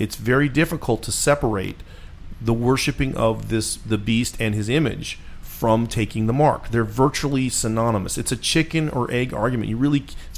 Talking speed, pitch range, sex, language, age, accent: 175 wpm, 105-135 Hz, male, English, 40-59, American